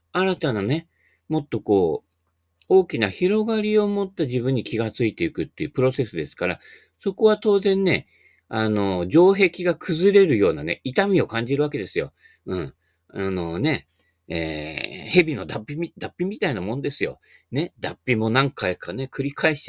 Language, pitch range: Japanese, 100-165 Hz